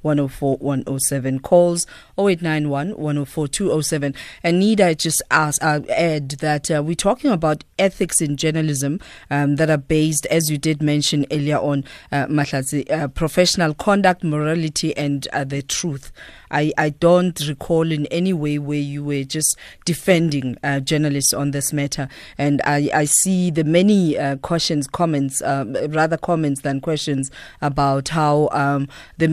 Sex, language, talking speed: female, English, 160 wpm